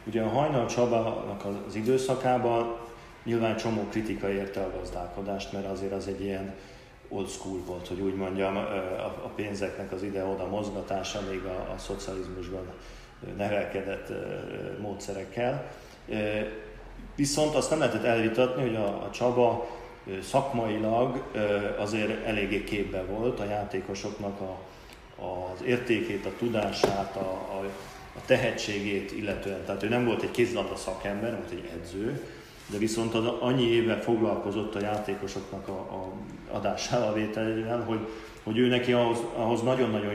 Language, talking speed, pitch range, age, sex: Hungarian, 135 wpm, 100-115 Hz, 40-59, male